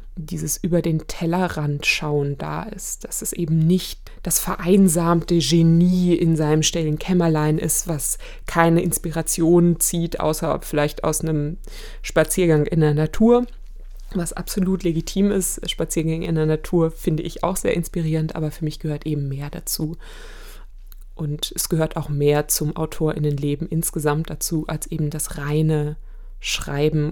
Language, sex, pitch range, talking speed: German, female, 150-170 Hz, 155 wpm